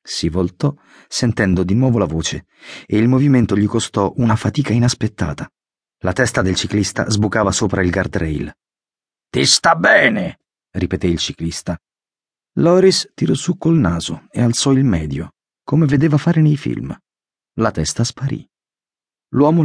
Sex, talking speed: male, 145 wpm